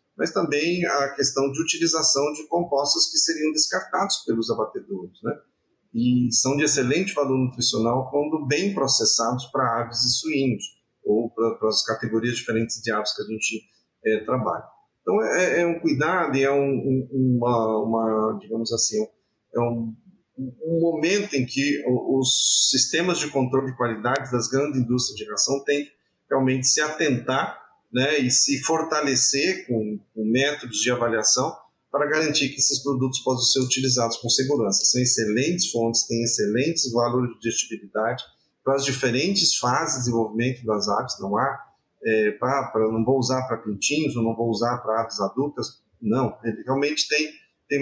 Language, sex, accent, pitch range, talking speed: Portuguese, male, Brazilian, 115-145 Hz, 160 wpm